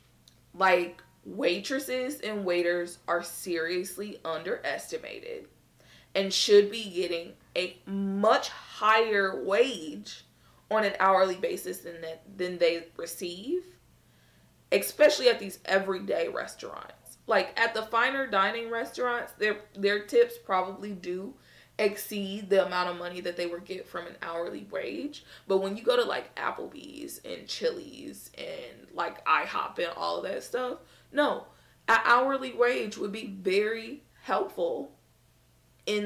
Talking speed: 130 wpm